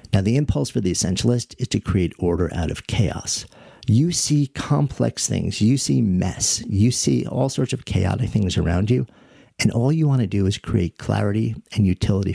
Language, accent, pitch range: English, American, 95-120 Hz